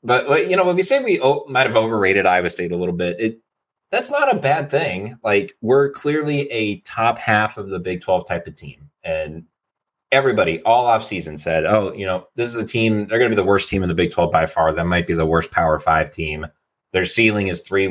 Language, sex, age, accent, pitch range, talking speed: English, male, 30-49, American, 90-115 Hz, 240 wpm